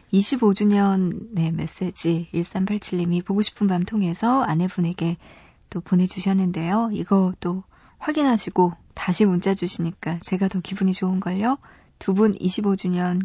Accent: native